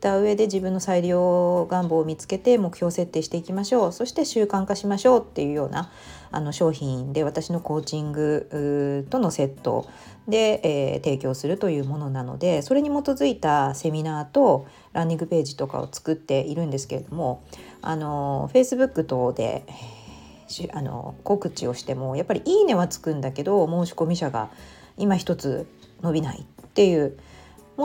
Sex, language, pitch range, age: female, Japanese, 145-205 Hz, 40-59